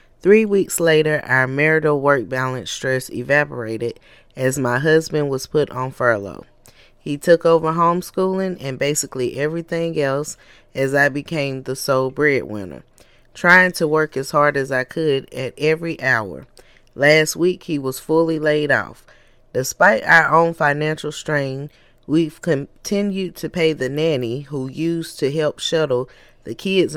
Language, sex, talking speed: English, female, 145 wpm